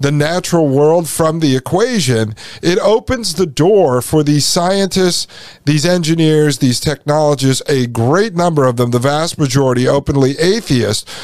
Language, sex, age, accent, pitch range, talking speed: English, male, 50-69, American, 135-175 Hz, 145 wpm